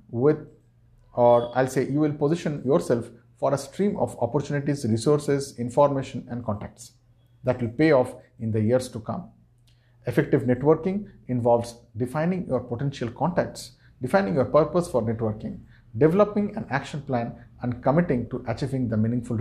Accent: Indian